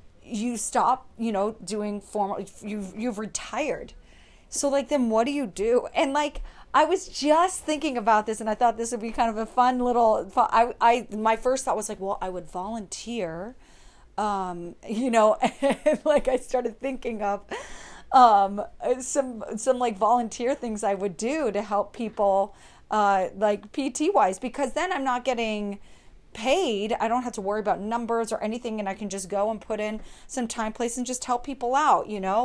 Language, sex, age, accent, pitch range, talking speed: English, female, 30-49, American, 205-255 Hz, 190 wpm